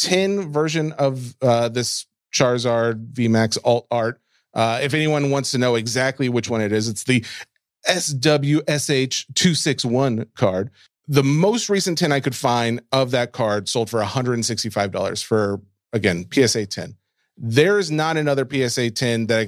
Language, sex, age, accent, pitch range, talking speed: English, male, 40-59, American, 120-145 Hz, 145 wpm